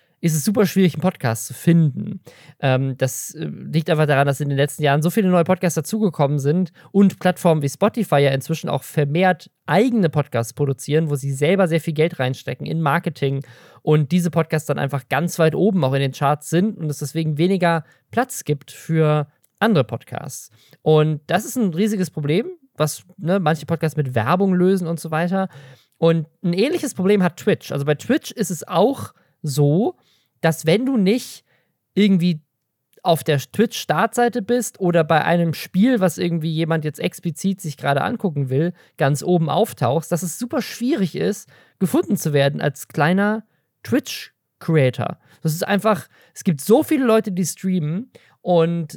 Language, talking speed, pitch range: German, 170 wpm, 145-185 Hz